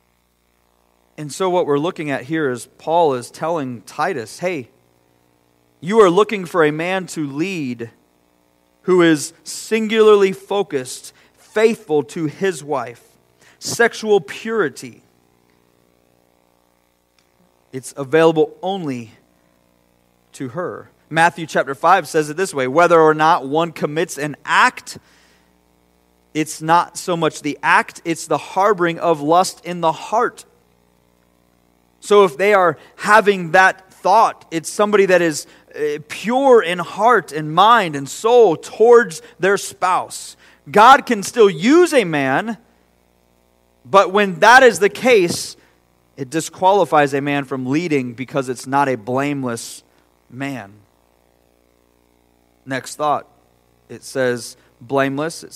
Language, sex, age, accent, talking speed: English, male, 40-59, American, 125 wpm